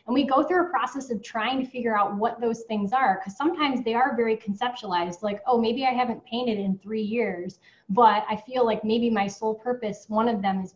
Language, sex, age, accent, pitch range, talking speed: English, female, 10-29, American, 200-250 Hz, 235 wpm